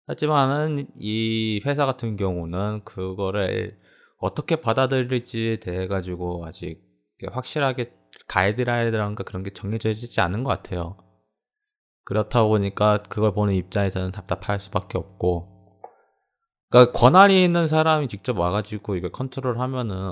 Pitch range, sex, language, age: 95-125 Hz, male, Korean, 20-39